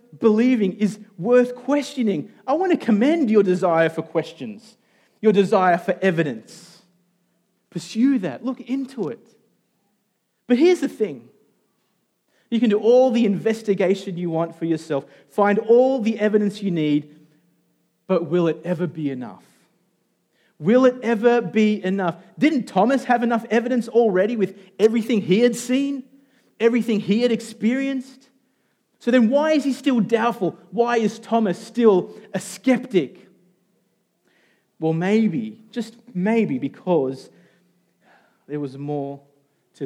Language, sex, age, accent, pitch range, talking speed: English, male, 30-49, Australian, 165-230 Hz, 135 wpm